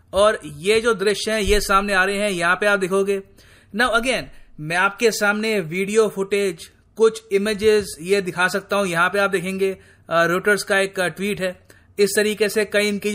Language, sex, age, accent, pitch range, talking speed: Hindi, male, 30-49, native, 195-220 Hz, 190 wpm